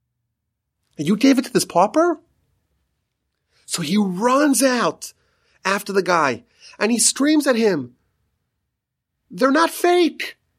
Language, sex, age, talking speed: English, male, 30-49, 120 wpm